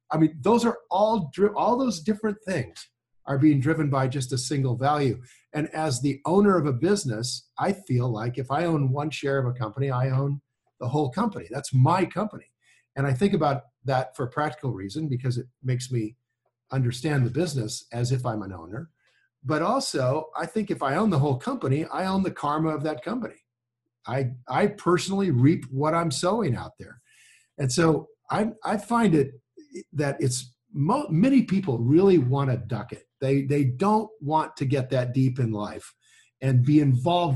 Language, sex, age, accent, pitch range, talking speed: English, male, 50-69, American, 125-165 Hz, 190 wpm